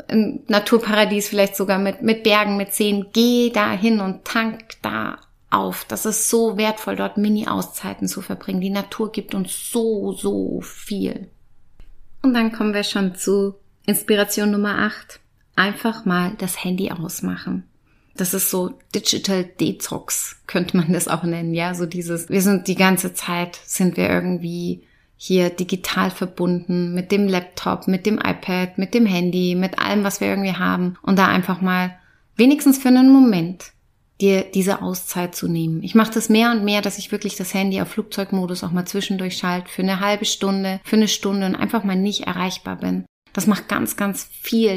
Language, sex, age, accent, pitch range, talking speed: German, female, 30-49, German, 180-210 Hz, 175 wpm